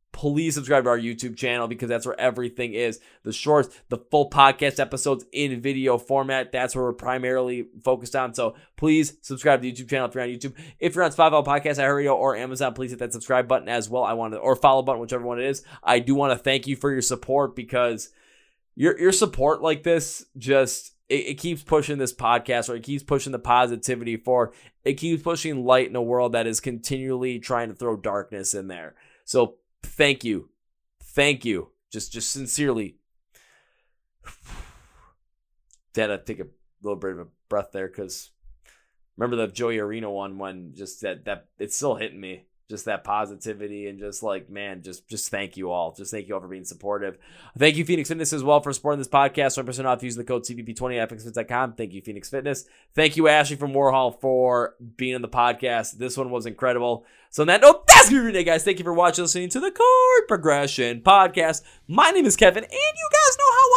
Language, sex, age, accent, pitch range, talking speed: English, male, 20-39, American, 120-150 Hz, 210 wpm